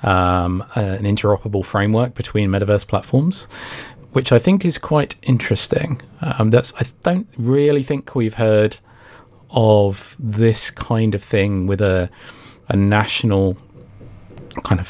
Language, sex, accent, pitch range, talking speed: English, male, British, 100-120 Hz, 130 wpm